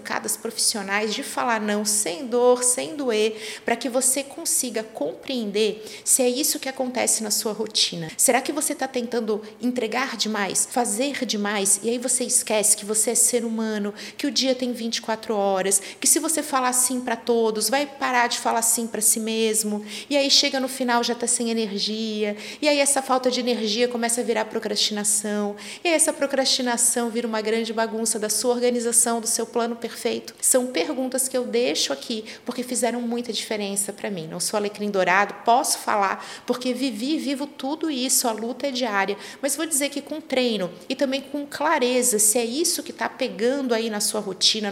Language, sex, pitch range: Portuguese, female, 220-275 Hz